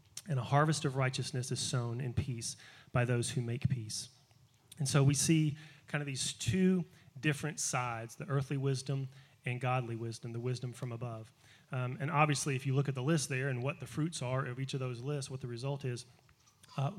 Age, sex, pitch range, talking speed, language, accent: 30-49, male, 130-150 Hz, 210 wpm, English, American